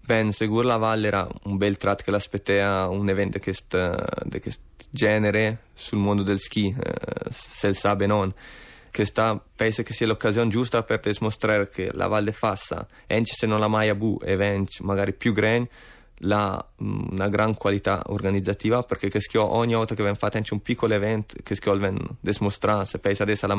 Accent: native